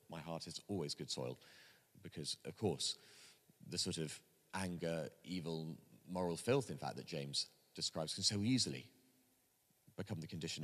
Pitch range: 85-130 Hz